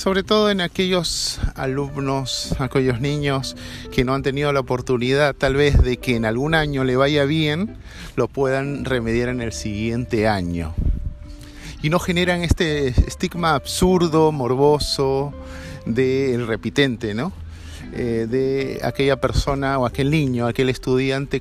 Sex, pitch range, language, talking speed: male, 110-150 Hz, Spanish, 140 wpm